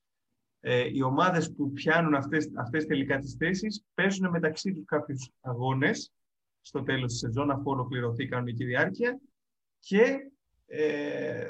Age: 30-49